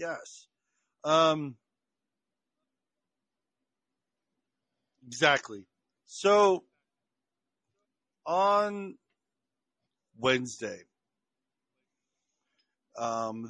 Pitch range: 125-165 Hz